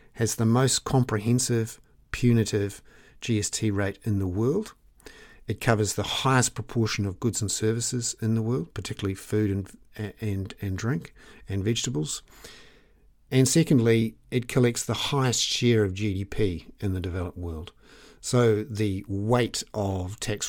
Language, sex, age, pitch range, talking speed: English, male, 50-69, 95-115 Hz, 140 wpm